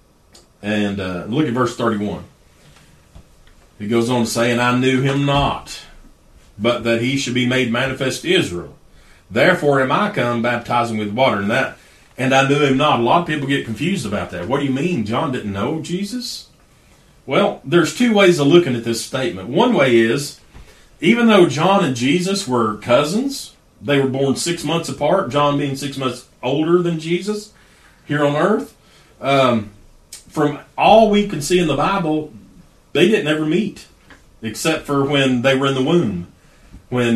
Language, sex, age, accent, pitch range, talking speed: English, male, 40-59, American, 115-155 Hz, 180 wpm